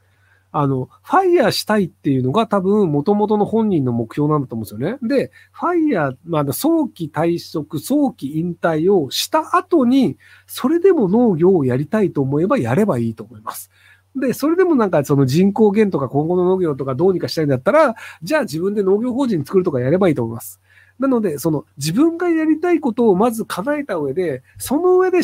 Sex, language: male, Japanese